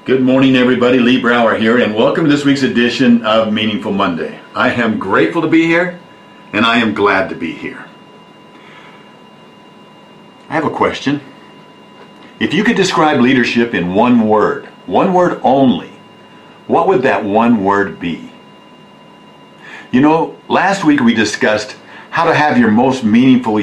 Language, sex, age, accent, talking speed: English, male, 50-69, American, 155 wpm